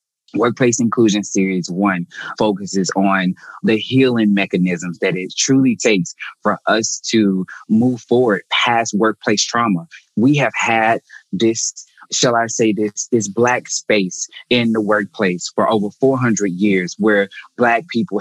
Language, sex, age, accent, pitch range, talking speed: English, male, 20-39, American, 100-120 Hz, 140 wpm